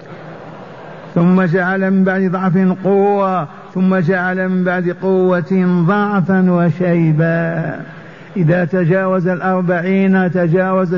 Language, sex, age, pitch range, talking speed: Arabic, male, 50-69, 165-185 Hz, 95 wpm